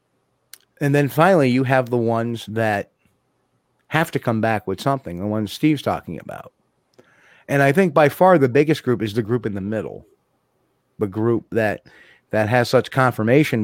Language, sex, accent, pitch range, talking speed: English, male, American, 110-140 Hz, 175 wpm